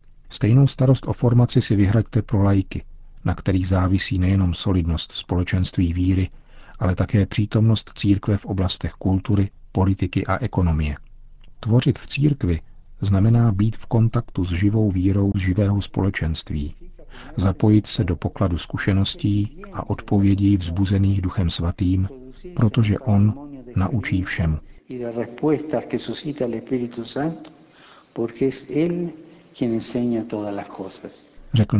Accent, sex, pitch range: native, male, 90-110 Hz